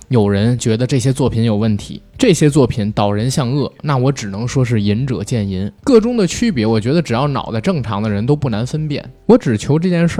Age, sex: 20-39, male